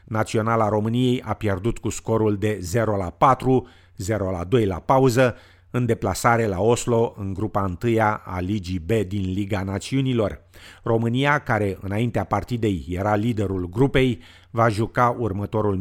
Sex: male